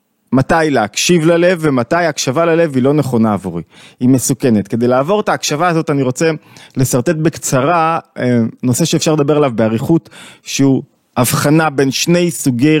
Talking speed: 145 wpm